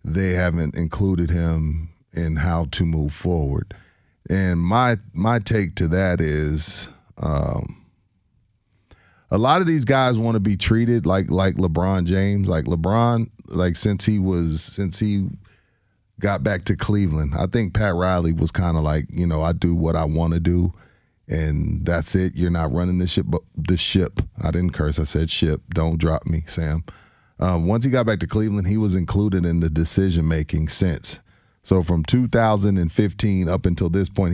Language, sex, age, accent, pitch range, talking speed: English, male, 30-49, American, 85-110 Hz, 175 wpm